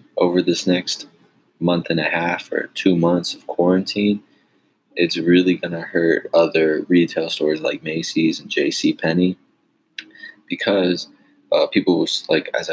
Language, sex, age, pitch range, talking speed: English, male, 20-39, 85-95 Hz, 140 wpm